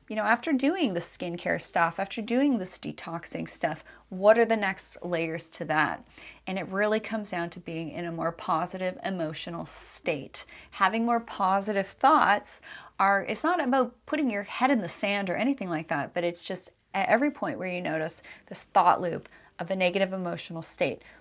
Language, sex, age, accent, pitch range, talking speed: English, female, 30-49, American, 175-220 Hz, 190 wpm